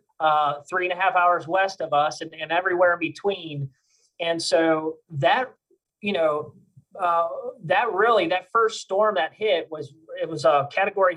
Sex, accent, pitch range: male, American, 155-200 Hz